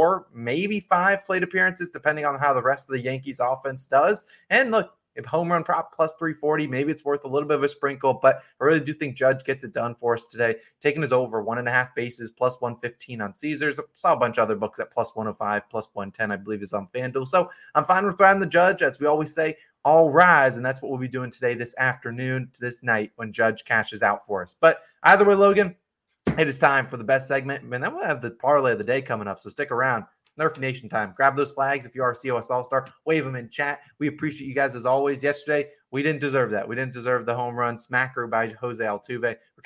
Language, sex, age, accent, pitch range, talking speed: English, male, 20-39, American, 125-150 Hz, 255 wpm